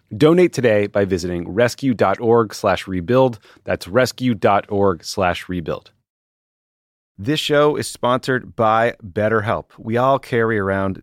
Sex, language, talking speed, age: male, English, 90 wpm, 30-49